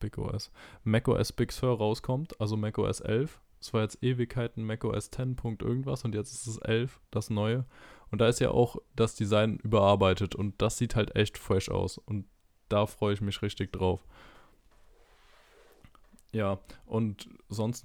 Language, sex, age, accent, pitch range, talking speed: German, male, 20-39, German, 105-115 Hz, 170 wpm